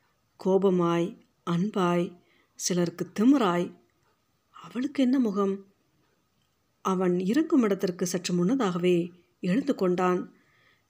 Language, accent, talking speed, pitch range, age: Tamil, native, 75 wpm, 180-225 Hz, 50-69